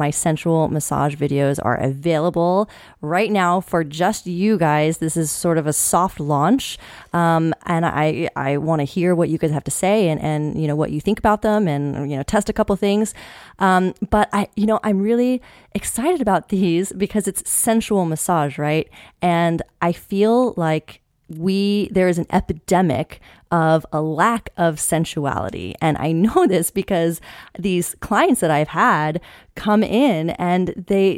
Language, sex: English, female